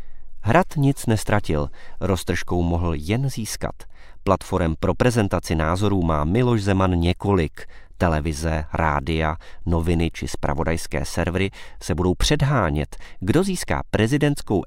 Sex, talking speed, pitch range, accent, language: male, 110 wpm, 80-110 Hz, native, Czech